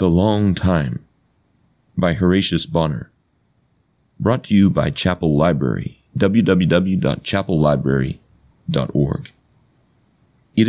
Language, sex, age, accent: English, male, 30-49, American